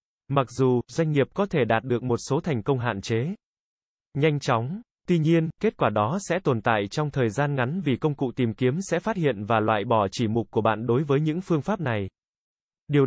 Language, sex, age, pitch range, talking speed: Vietnamese, male, 20-39, 120-160 Hz, 230 wpm